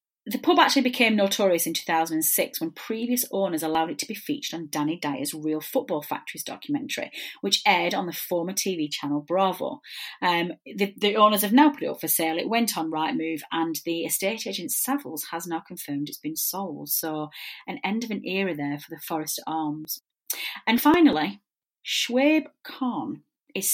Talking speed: 185 wpm